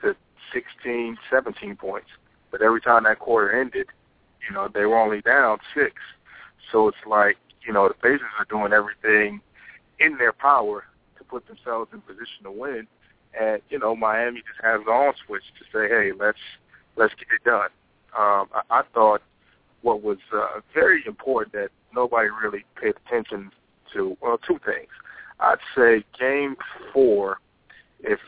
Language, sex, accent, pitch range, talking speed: English, male, American, 105-145 Hz, 160 wpm